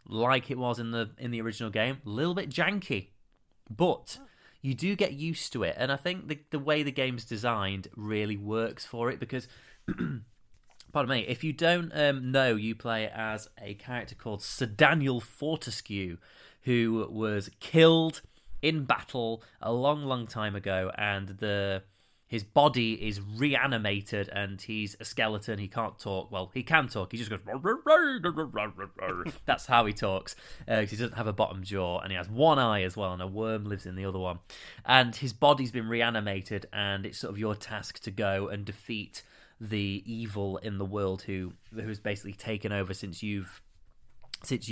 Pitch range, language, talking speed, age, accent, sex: 100-130 Hz, English, 180 wpm, 30-49, British, male